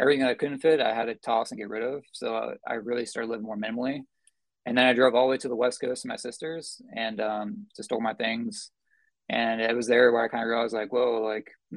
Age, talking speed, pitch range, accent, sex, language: 20-39, 260 wpm, 110-135 Hz, American, male, English